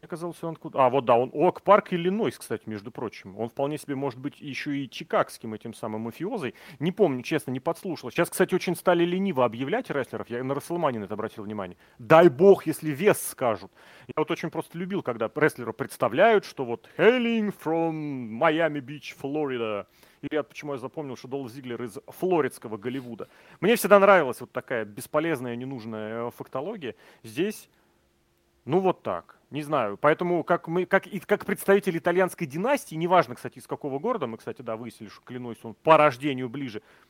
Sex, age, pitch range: male, 30-49, 125-175 Hz